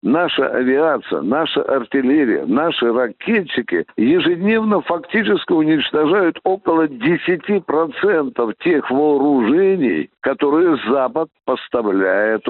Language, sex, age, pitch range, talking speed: Russian, male, 60-79, 125-180 Hz, 80 wpm